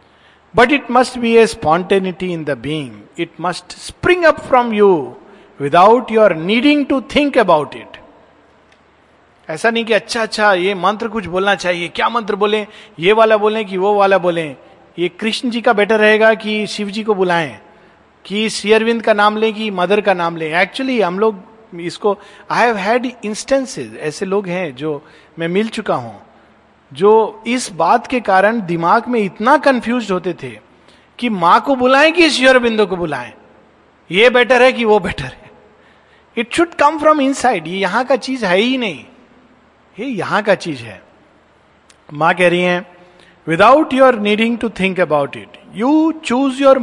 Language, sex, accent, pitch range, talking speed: Hindi, male, native, 180-240 Hz, 175 wpm